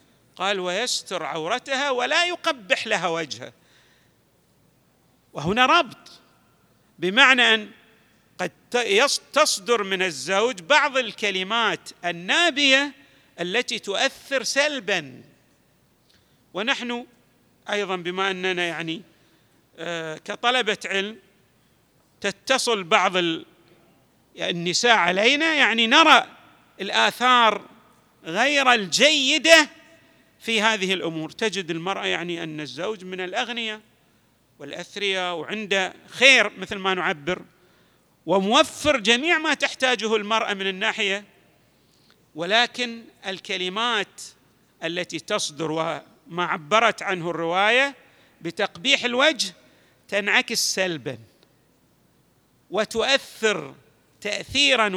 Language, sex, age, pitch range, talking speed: Arabic, male, 50-69, 180-250 Hz, 80 wpm